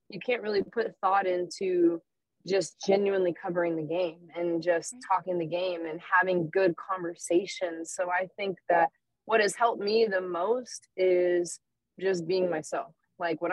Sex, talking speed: female, 160 wpm